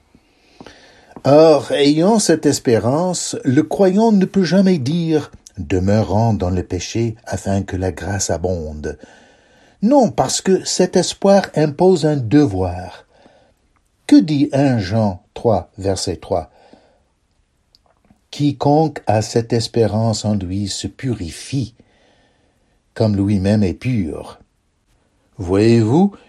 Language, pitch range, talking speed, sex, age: Russian, 100-145 Hz, 105 wpm, male, 60-79